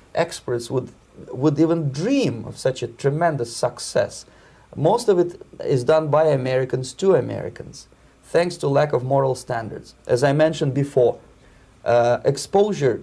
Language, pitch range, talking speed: English, 125-165 Hz, 145 wpm